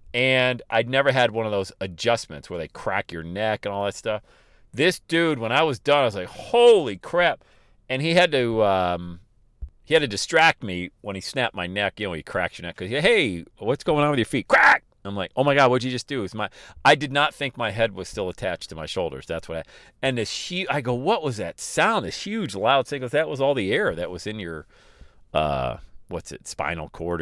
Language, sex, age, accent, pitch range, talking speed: English, male, 40-59, American, 100-150 Hz, 245 wpm